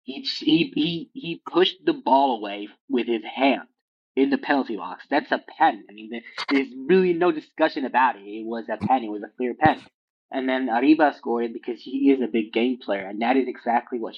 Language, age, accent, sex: English, 20-39, American, male